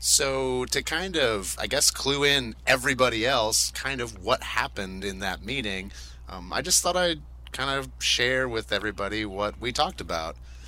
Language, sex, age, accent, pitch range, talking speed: English, male, 30-49, American, 90-120 Hz, 175 wpm